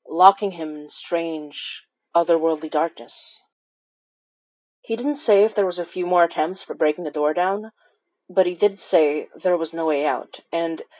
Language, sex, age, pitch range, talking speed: English, female, 30-49, 155-185 Hz, 170 wpm